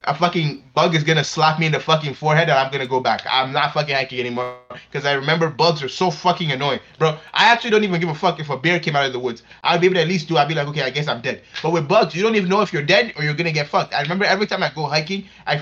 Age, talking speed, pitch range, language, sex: 20-39, 330 wpm, 140-185 Hz, English, male